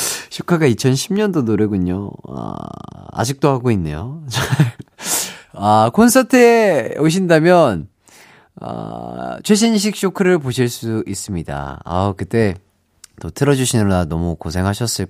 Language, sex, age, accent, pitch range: Korean, male, 30-49, native, 105-165 Hz